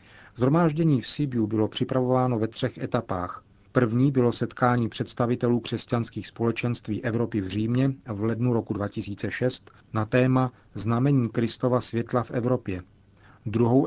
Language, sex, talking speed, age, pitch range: Czech, male, 125 wpm, 40-59, 105-125 Hz